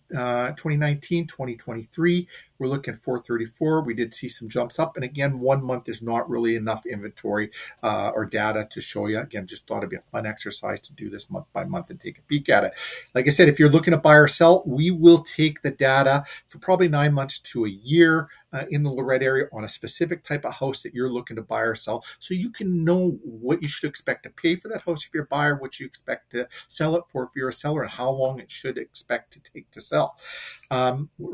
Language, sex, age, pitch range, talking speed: English, male, 40-59, 125-160 Hz, 245 wpm